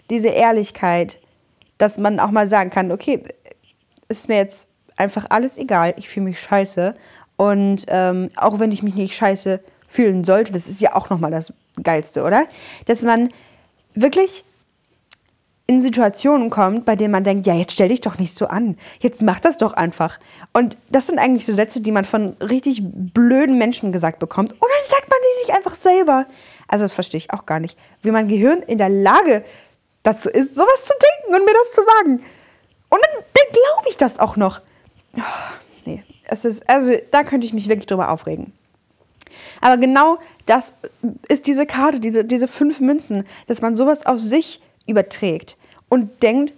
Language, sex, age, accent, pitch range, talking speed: German, female, 20-39, German, 195-265 Hz, 185 wpm